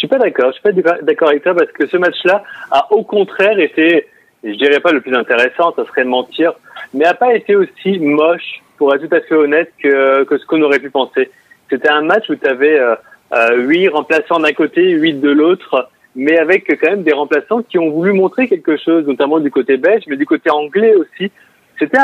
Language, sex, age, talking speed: French, male, 30-49, 225 wpm